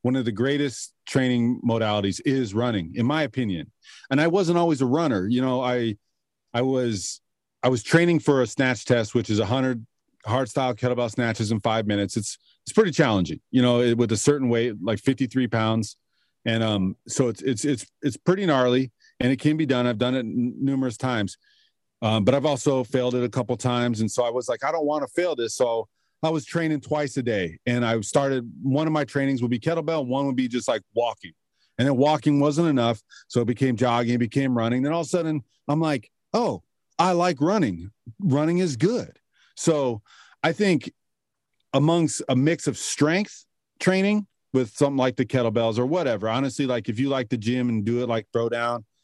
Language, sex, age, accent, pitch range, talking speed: English, male, 40-59, American, 115-145 Hz, 210 wpm